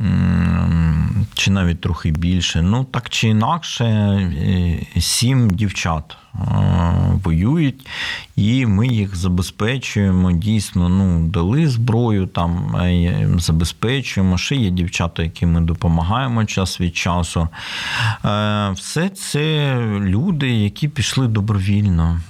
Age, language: 40-59, Ukrainian